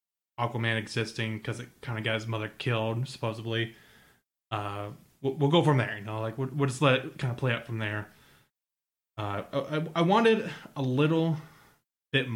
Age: 20-39